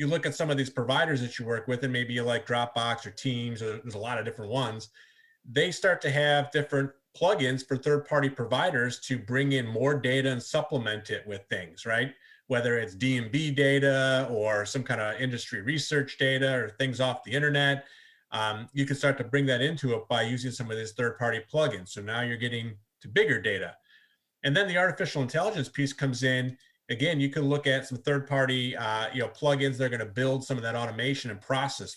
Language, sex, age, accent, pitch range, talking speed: English, male, 30-49, American, 120-145 Hz, 210 wpm